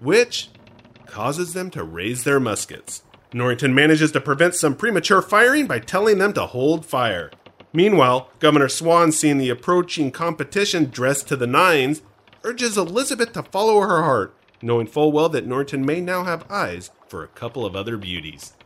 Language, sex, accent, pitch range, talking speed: English, male, American, 120-160 Hz, 165 wpm